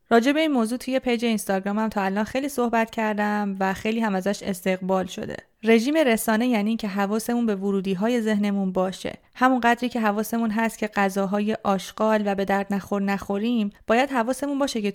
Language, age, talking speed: Persian, 30-49, 175 wpm